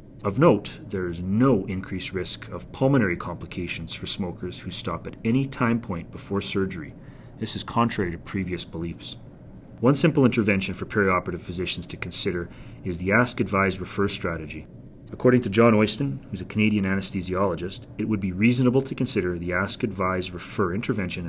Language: English